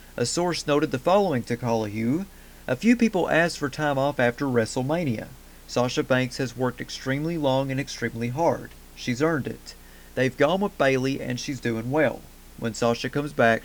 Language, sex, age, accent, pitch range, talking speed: English, male, 40-59, American, 115-145 Hz, 175 wpm